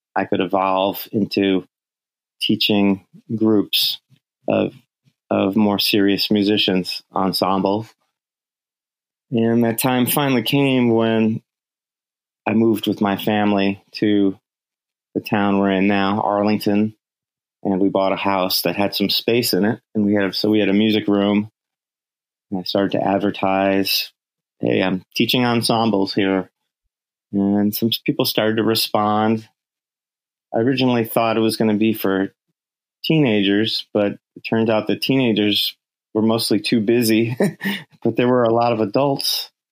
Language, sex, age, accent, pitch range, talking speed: English, male, 30-49, American, 100-115 Hz, 140 wpm